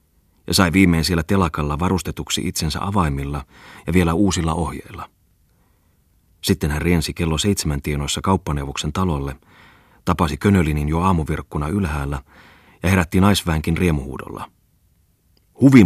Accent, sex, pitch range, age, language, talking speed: native, male, 75-95 Hz, 30-49, Finnish, 115 wpm